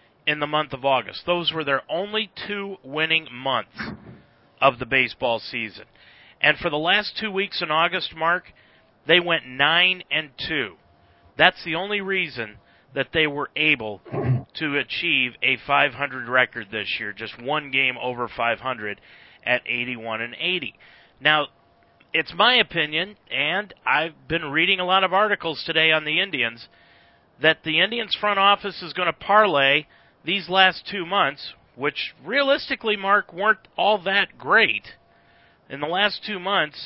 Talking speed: 155 wpm